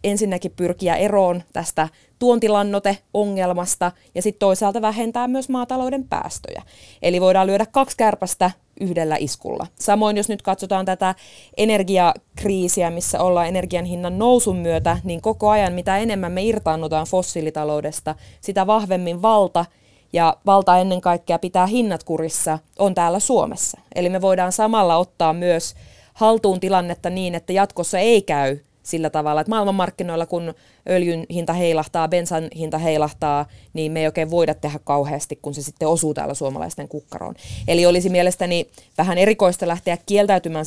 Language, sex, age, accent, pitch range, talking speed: Finnish, female, 20-39, native, 160-195 Hz, 145 wpm